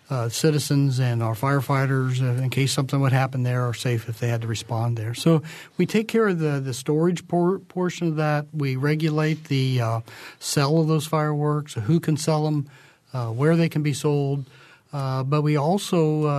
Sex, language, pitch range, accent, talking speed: male, English, 130-150 Hz, American, 200 wpm